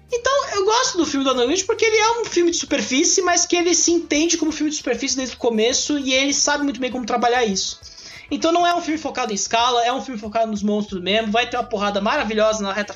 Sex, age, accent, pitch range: male, 20-39, Brazilian, 215-295 Hz